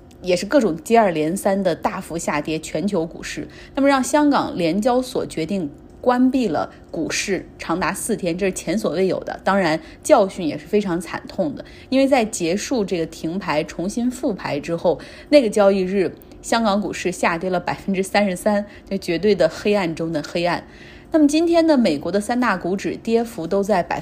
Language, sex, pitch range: Chinese, female, 180-230 Hz